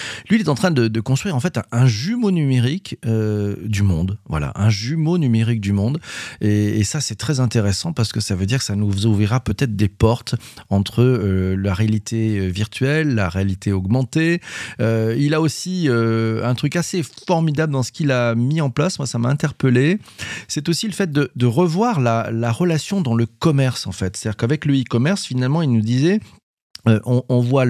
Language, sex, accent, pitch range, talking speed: French, male, French, 110-150 Hz, 210 wpm